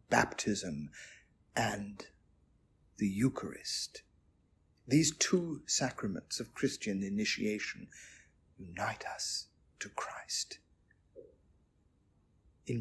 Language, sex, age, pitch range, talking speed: English, male, 50-69, 95-140 Hz, 70 wpm